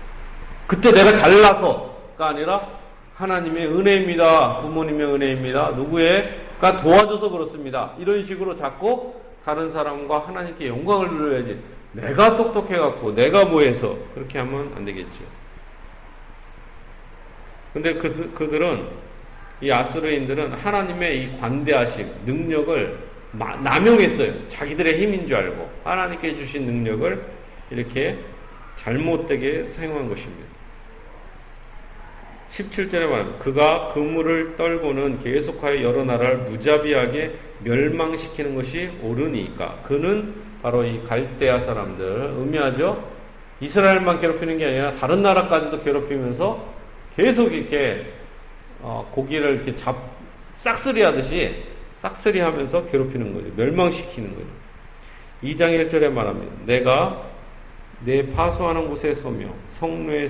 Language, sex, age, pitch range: Korean, male, 40-59, 130-175 Hz